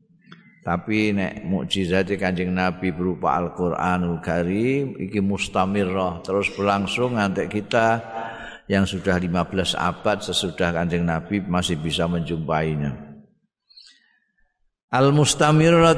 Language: Indonesian